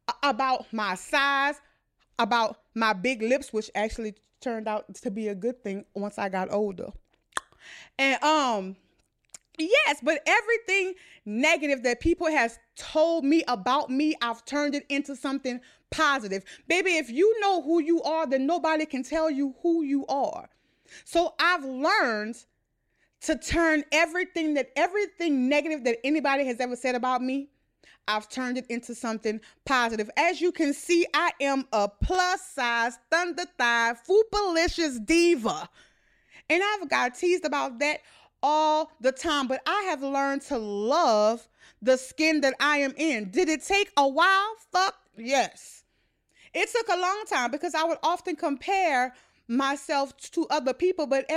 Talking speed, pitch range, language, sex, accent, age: 155 wpm, 250-335 Hz, English, female, American, 30-49